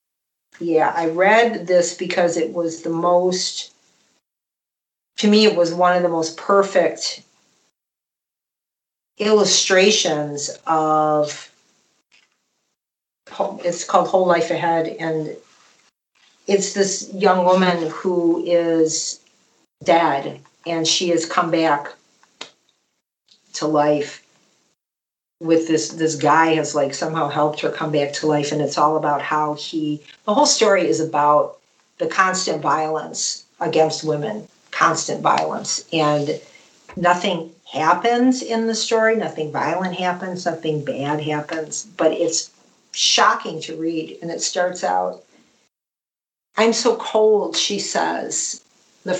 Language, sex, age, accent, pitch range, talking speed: English, female, 50-69, American, 155-185 Hz, 120 wpm